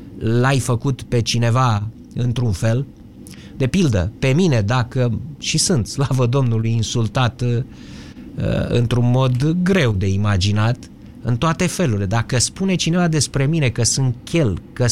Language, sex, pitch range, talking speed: Romanian, male, 110-140 Hz, 135 wpm